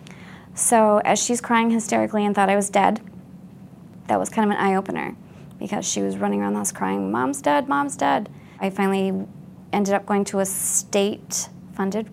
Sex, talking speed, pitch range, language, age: female, 180 wpm, 185-215 Hz, English, 20-39